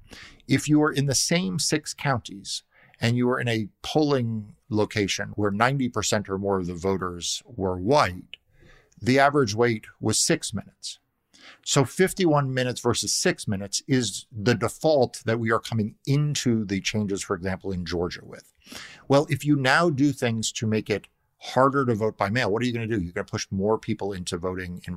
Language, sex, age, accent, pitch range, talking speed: English, male, 50-69, American, 100-130 Hz, 195 wpm